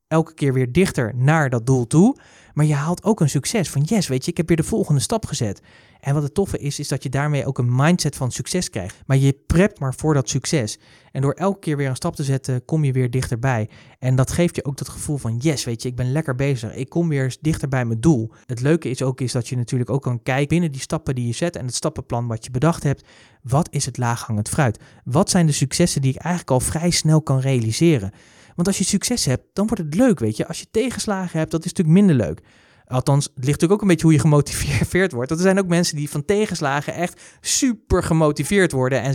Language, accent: Dutch, Dutch